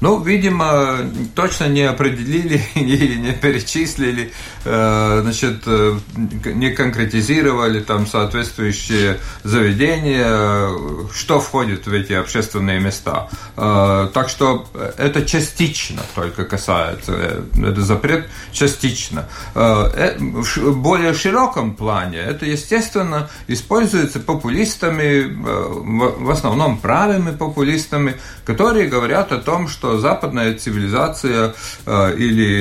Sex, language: male, Russian